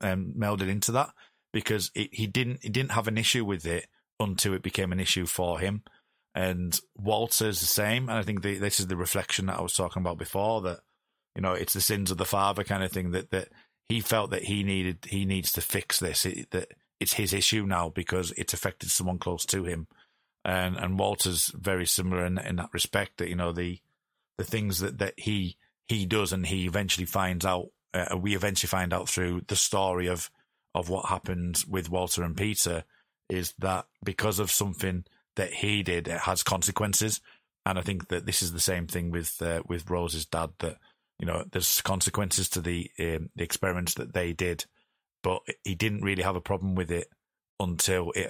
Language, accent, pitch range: English, British, 90-100 Hz